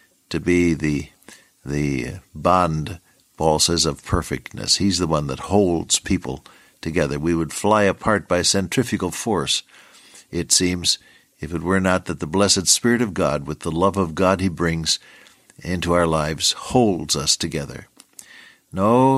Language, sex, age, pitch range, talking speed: English, male, 60-79, 80-120 Hz, 155 wpm